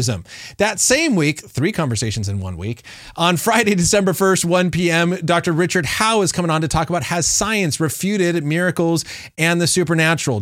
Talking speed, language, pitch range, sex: 175 wpm, English, 145-195 Hz, male